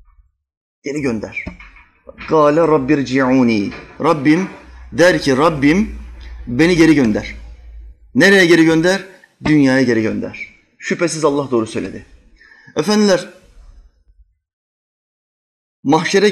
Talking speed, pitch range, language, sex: 80 wpm, 135-195 Hz, Turkish, male